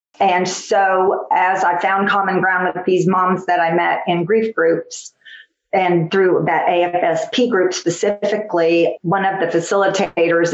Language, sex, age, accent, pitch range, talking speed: English, female, 40-59, American, 170-200 Hz, 150 wpm